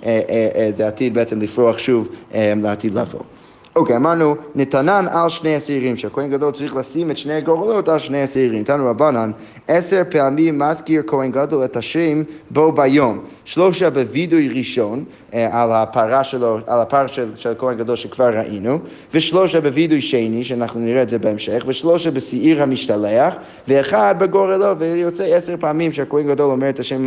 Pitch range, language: 125-160 Hz, Hebrew